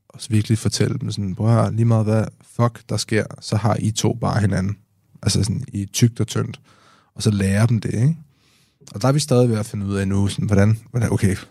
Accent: native